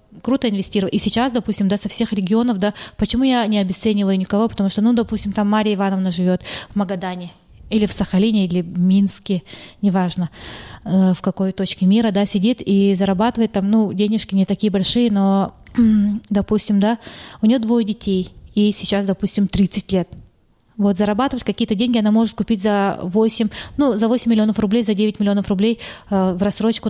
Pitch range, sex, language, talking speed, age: 195-230 Hz, female, Russian, 180 wpm, 20-39